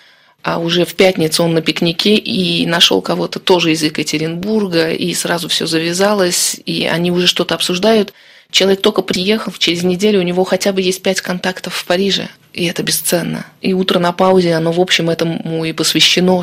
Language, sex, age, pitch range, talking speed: Russian, female, 20-39, 155-185 Hz, 180 wpm